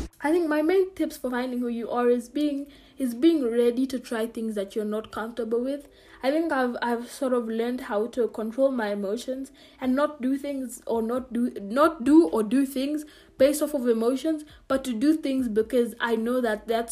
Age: 20-39